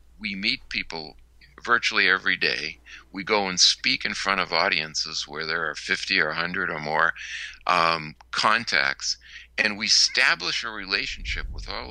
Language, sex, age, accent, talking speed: English, male, 60-79, American, 155 wpm